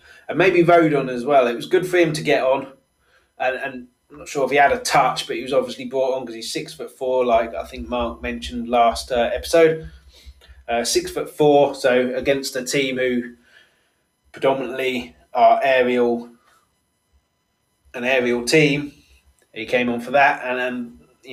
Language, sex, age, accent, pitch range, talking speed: English, male, 20-39, British, 115-140 Hz, 185 wpm